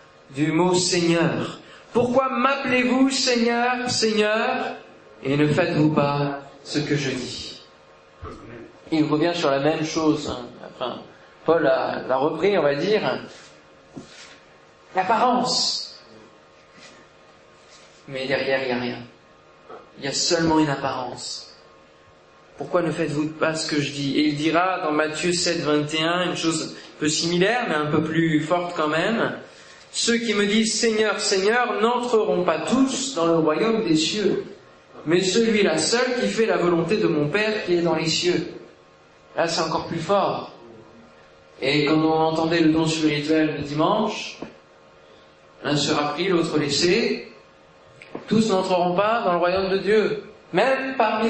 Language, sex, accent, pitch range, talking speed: French, male, French, 125-210 Hz, 155 wpm